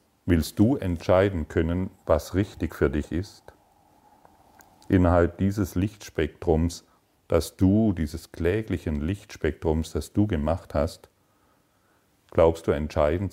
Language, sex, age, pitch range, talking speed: German, male, 40-59, 75-95 Hz, 110 wpm